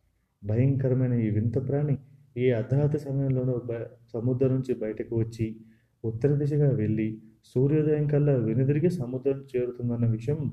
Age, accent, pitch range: 30-49, native, 115-130 Hz